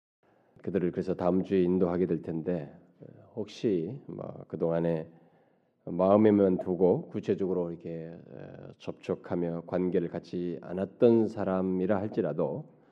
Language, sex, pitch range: Korean, male, 85-100 Hz